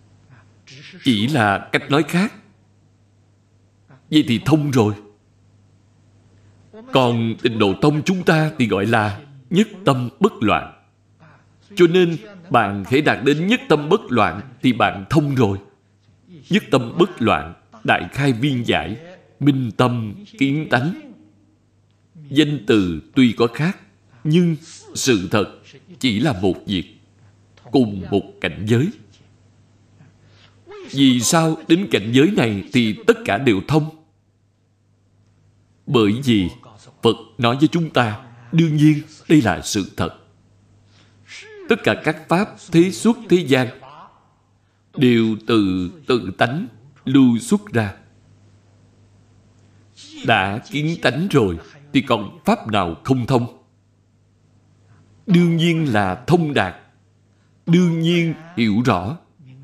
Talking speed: 125 wpm